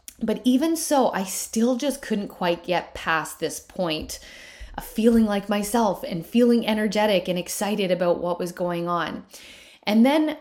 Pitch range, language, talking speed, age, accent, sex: 175-240 Hz, English, 160 wpm, 30-49, American, female